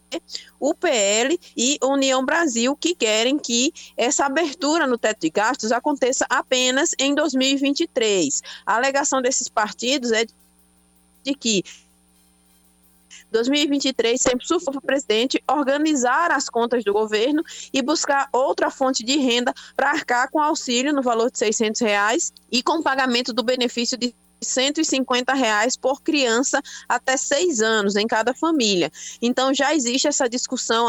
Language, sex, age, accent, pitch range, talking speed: Portuguese, female, 20-39, Brazilian, 220-275 Hz, 140 wpm